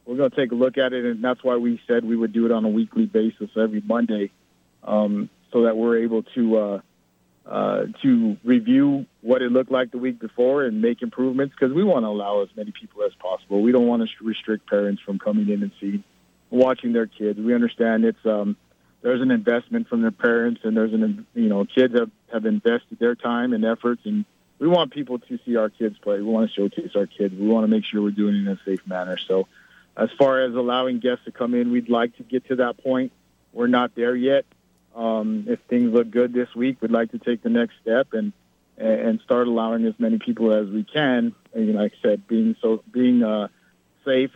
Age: 40-59